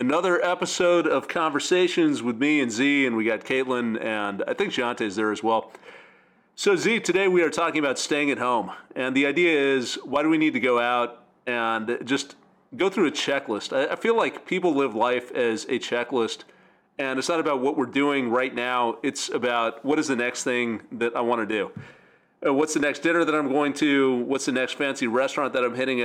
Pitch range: 120-155 Hz